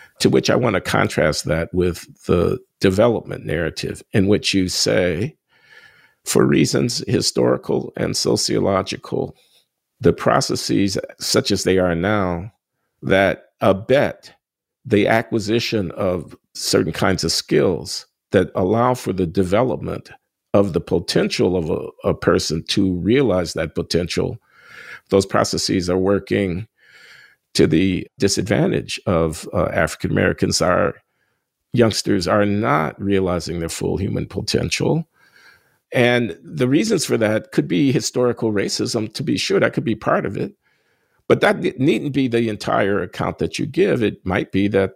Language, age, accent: English, 50-69, American